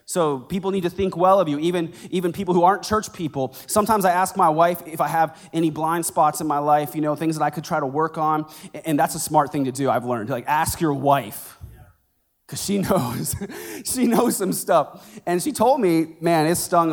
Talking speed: 240 wpm